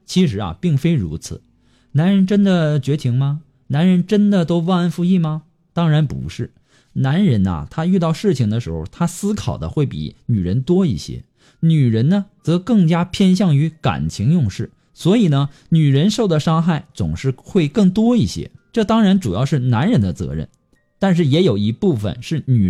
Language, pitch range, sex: Chinese, 120-175 Hz, male